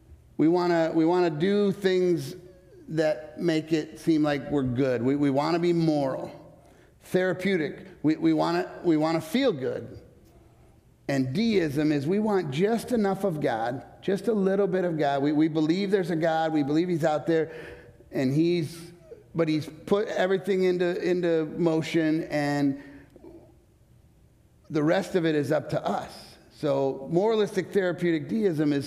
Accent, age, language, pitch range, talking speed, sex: American, 50-69, English, 145-175 Hz, 160 wpm, male